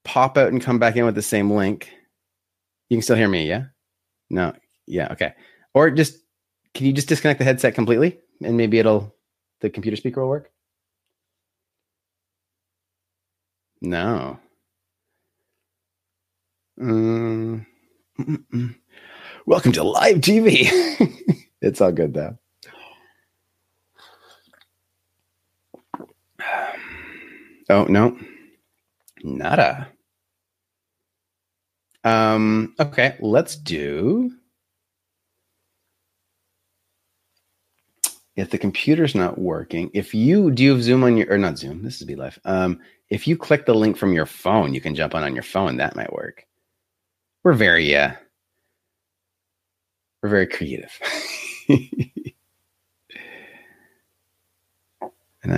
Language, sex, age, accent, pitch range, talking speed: English, male, 30-49, American, 90-115 Hz, 110 wpm